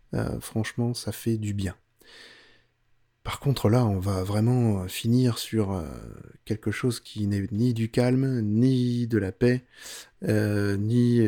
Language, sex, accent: French, male, French